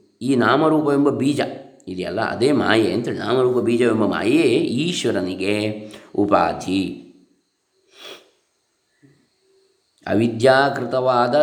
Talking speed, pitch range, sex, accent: 70 wpm, 130-200 Hz, male, native